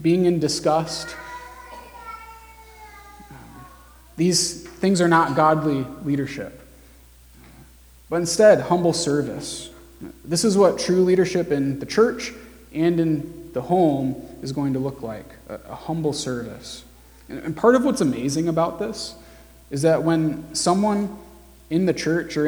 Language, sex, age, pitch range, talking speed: English, male, 20-39, 135-170 Hz, 130 wpm